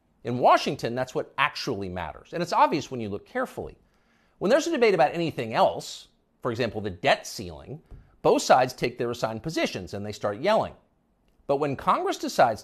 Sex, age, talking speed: male, 50-69, 185 wpm